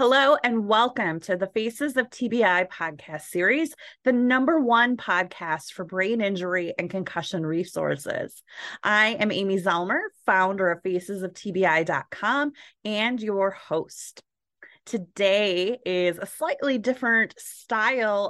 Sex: female